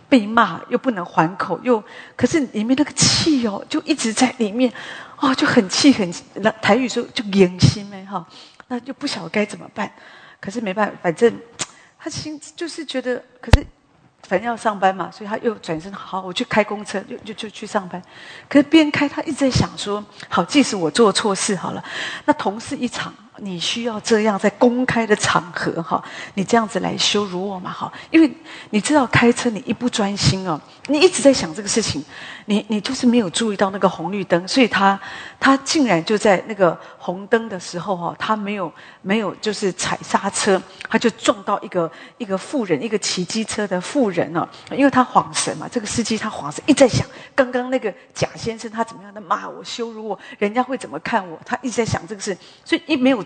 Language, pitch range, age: English, 195-250 Hz, 40-59